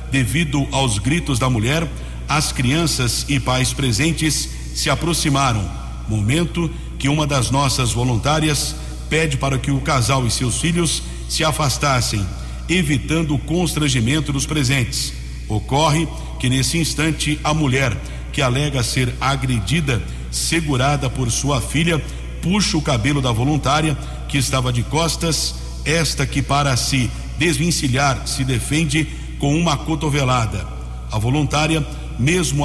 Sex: male